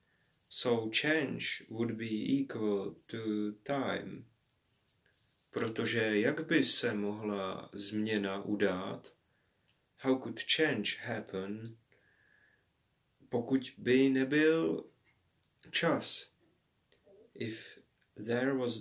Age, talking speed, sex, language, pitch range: 30-49, 80 wpm, male, Czech, 110-135 Hz